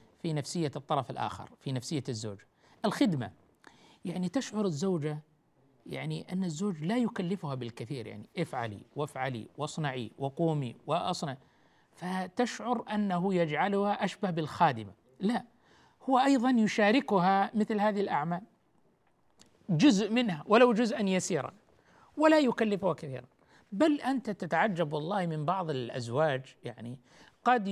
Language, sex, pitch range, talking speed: Arabic, male, 150-210 Hz, 115 wpm